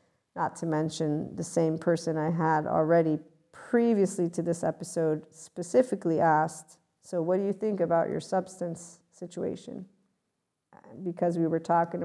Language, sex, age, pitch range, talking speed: English, female, 50-69, 160-185 Hz, 140 wpm